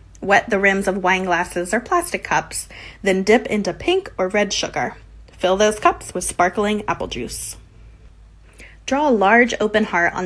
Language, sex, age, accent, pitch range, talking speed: English, female, 20-39, American, 170-225 Hz, 170 wpm